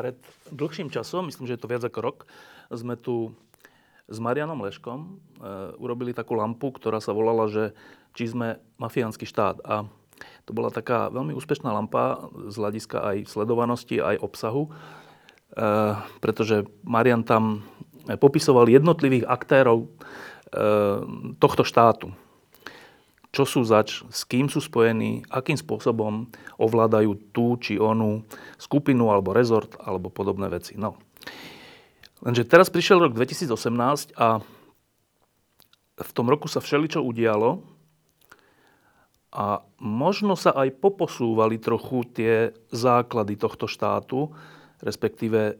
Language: Slovak